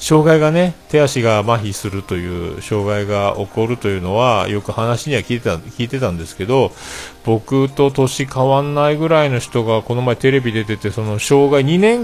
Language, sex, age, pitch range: Japanese, male, 40-59, 105-145 Hz